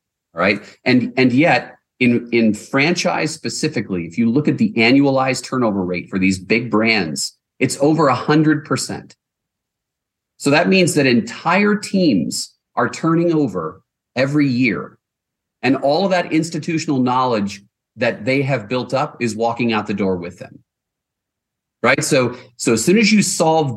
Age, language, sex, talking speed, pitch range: 40-59, English, male, 155 wpm, 110-150 Hz